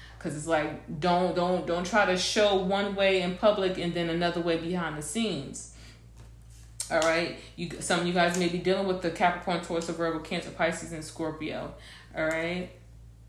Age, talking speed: 20-39, 185 wpm